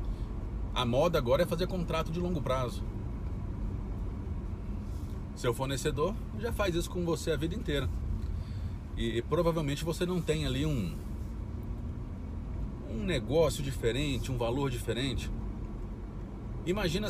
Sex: male